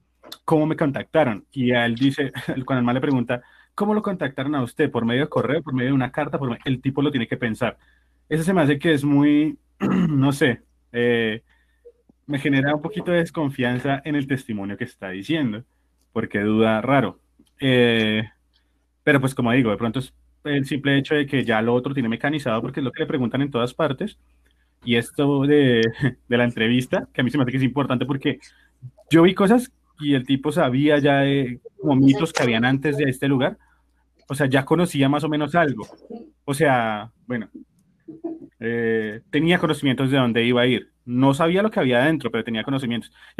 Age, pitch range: 20-39, 115-150 Hz